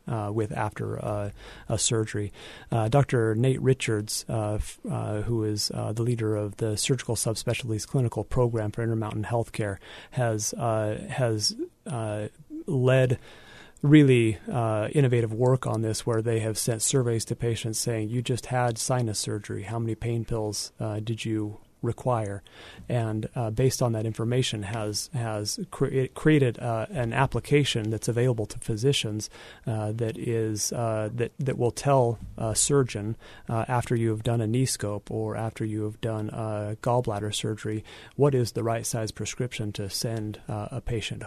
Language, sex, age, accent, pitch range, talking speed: English, male, 30-49, American, 110-125 Hz, 165 wpm